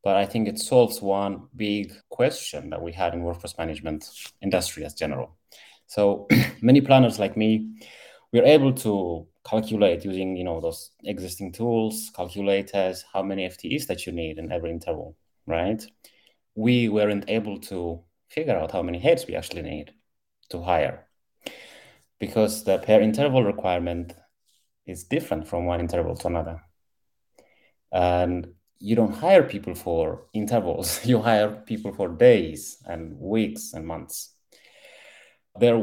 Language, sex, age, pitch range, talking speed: English, male, 30-49, 85-110 Hz, 145 wpm